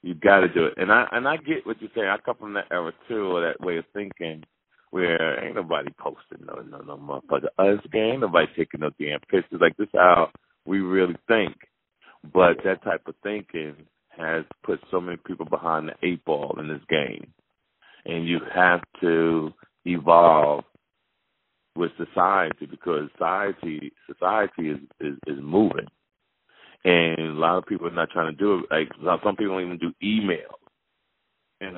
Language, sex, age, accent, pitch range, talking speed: English, male, 40-59, American, 85-100 Hz, 180 wpm